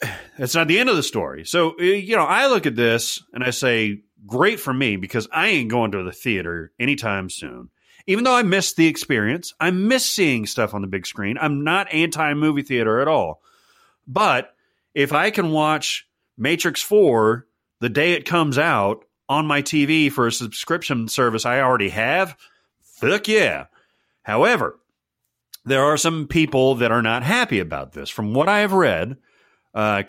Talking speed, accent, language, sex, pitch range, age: 180 wpm, American, English, male, 110-155 Hz, 30-49